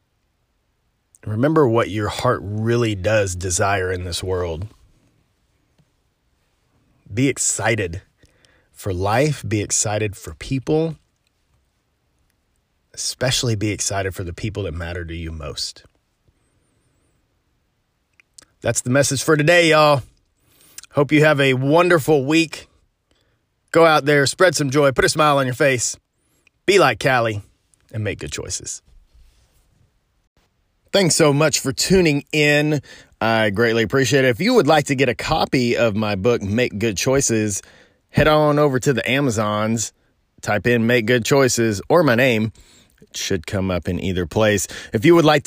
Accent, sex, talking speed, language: American, male, 145 wpm, English